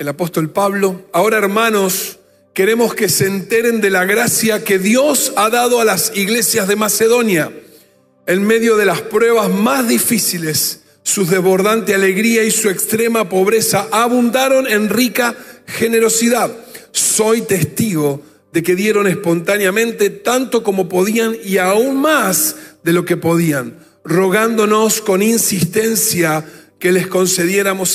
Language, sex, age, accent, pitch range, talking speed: Spanish, male, 40-59, Argentinian, 180-220 Hz, 130 wpm